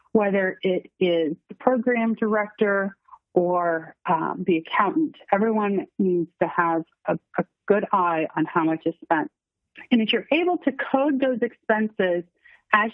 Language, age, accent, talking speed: English, 30-49, American, 150 wpm